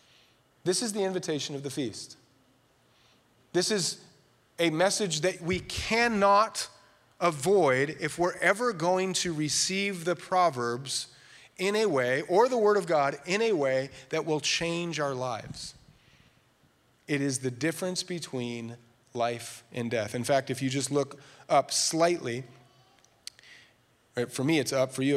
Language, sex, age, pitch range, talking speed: English, male, 30-49, 130-180 Hz, 145 wpm